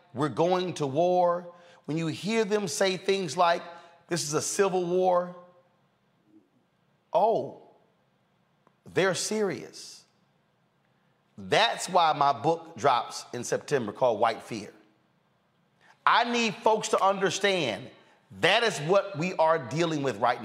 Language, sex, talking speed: English, male, 125 wpm